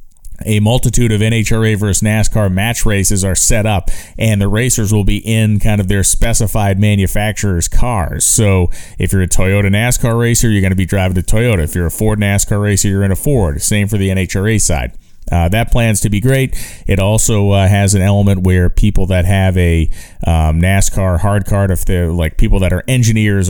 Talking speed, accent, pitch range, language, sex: 205 wpm, American, 90-110 Hz, English, male